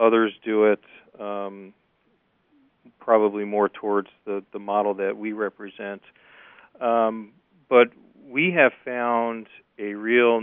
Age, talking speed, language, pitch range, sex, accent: 40-59, 115 wpm, English, 95-105 Hz, male, American